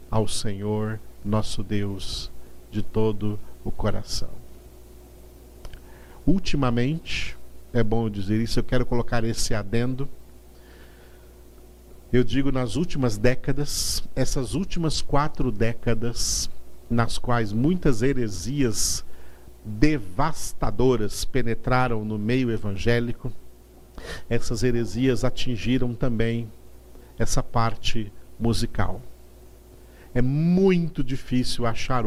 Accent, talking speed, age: Brazilian, 90 wpm, 50-69